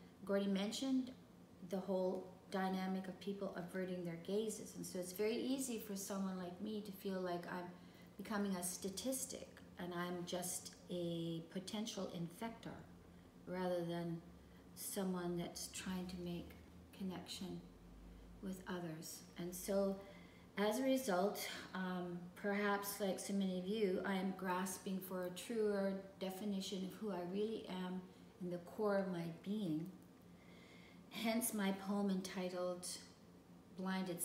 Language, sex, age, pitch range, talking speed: English, female, 40-59, 170-200 Hz, 135 wpm